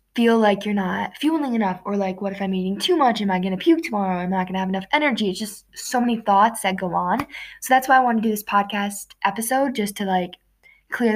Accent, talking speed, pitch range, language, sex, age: American, 265 wpm, 190-235 Hz, English, female, 10-29